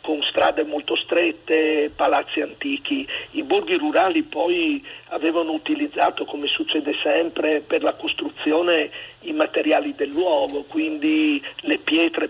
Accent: native